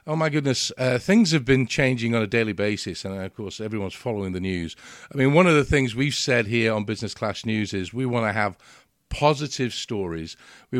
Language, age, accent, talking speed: English, 50-69, British, 220 wpm